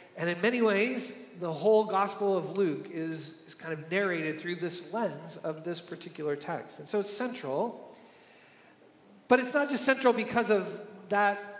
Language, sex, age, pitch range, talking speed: English, male, 40-59, 165-205 Hz, 170 wpm